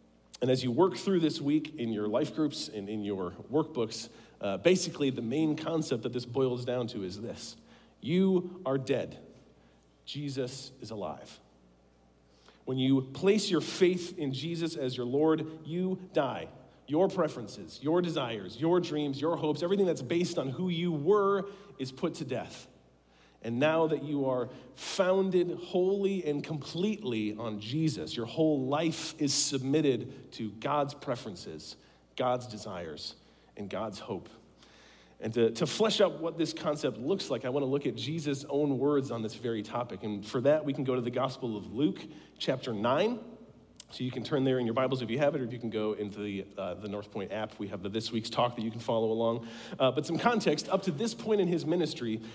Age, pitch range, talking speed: 40-59, 115-165 Hz, 190 wpm